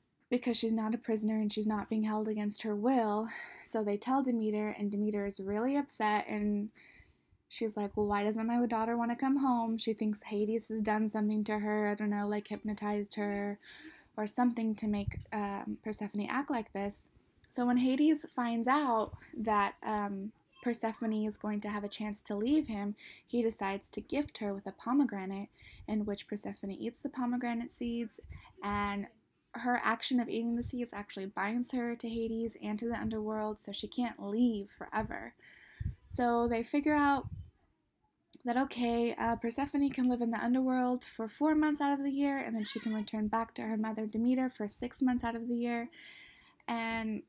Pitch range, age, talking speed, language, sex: 210-250 Hz, 20-39, 190 wpm, English, female